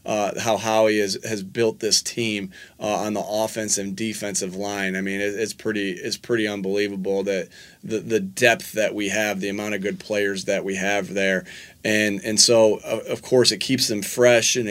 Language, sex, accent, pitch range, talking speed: English, male, American, 100-115 Hz, 205 wpm